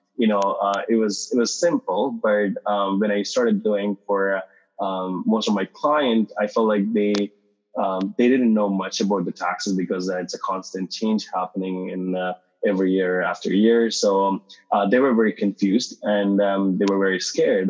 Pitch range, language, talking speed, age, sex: 95-115 Hz, English, 200 wpm, 20-39, male